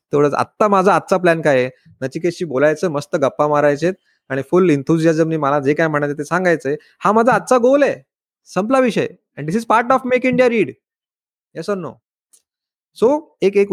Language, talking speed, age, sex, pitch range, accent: Marathi, 155 wpm, 20-39, male, 150-235 Hz, native